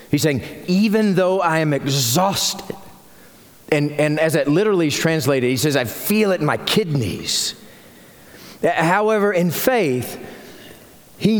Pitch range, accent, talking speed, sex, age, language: 165-245 Hz, American, 135 wpm, male, 40-59, English